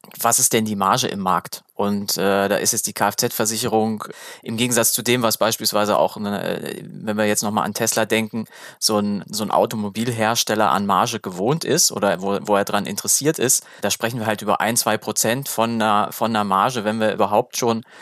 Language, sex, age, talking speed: German, male, 20-39, 205 wpm